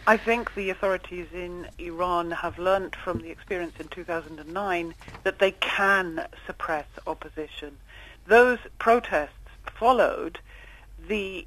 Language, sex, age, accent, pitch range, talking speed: English, female, 40-59, British, 170-210 Hz, 115 wpm